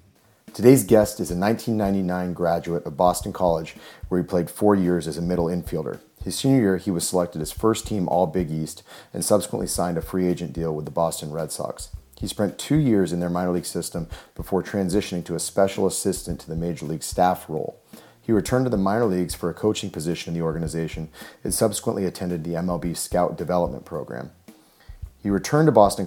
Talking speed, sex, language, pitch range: 200 wpm, male, English, 85-100 Hz